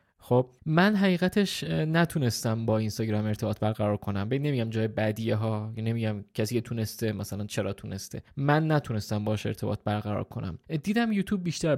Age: 20-39